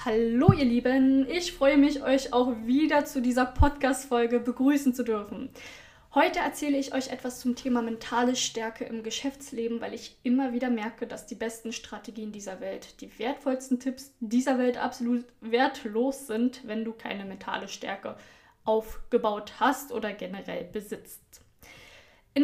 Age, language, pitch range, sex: 10-29, German, 225-260 Hz, female